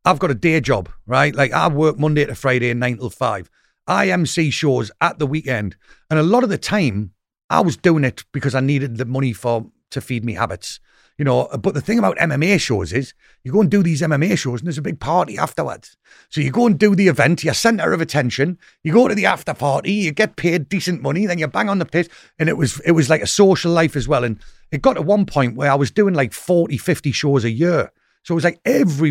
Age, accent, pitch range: 40-59, British, 125-170 Hz